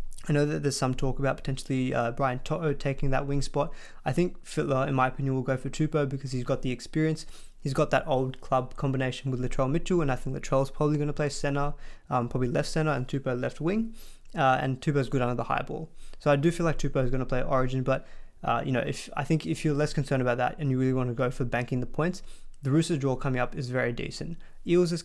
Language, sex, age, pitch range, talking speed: English, male, 20-39, 130-150 Hz, 255 wpm